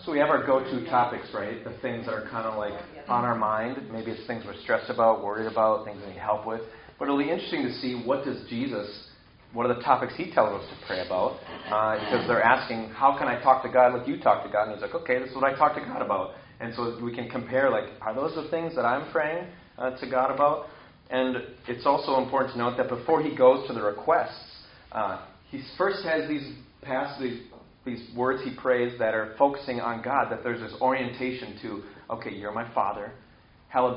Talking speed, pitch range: 230 wpm, 110-130 Hz